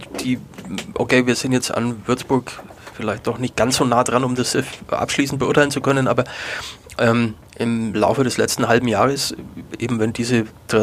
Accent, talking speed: German, 165 wpm